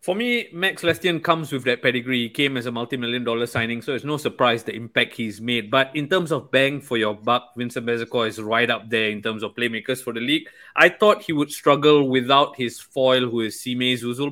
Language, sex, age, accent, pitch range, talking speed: English, male, 20-39, Malaysian, 125-160 Hz, 235 wpm